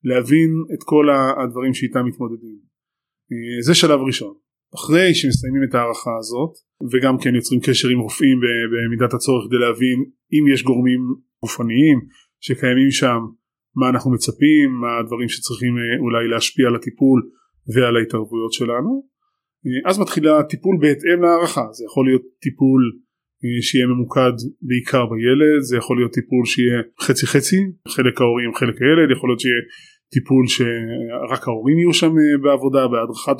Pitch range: 125-145 Hz